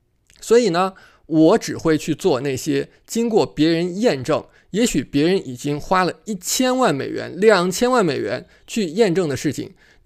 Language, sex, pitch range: Chinese, male, 155-235 Hz